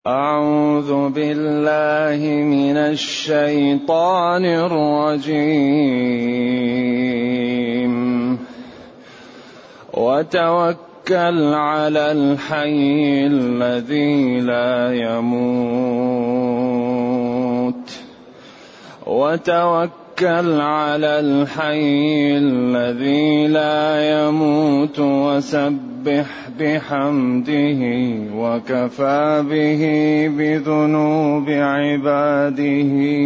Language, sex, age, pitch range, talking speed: Arabic, male, 30-49, 140-155 Hz, 40 wpm